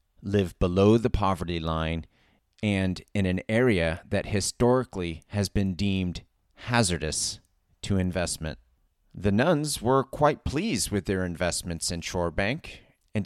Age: 30-49